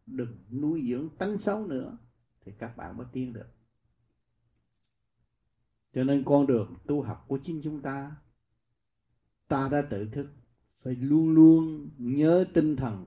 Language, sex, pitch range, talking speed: Vietnamese, male, 115-145 Hz, 145 wpm